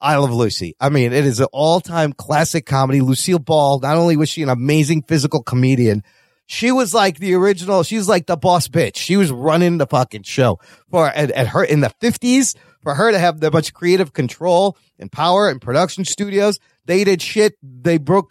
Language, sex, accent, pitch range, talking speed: English, male, American, 125-165 Hz, 205 wpm